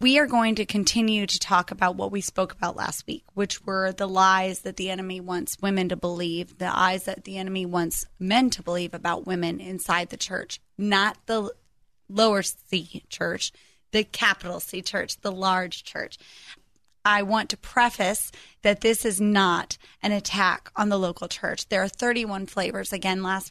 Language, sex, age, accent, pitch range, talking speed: English, female, 30-49, American, 190-225 Hz, 180 wpm